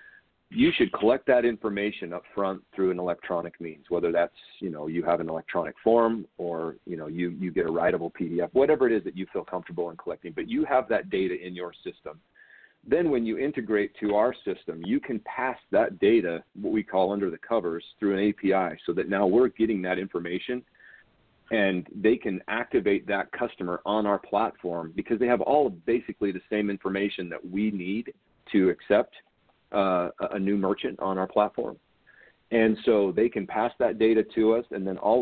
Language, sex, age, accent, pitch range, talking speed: English, male, 40-59, American, 95-115 Hz, 195 wpm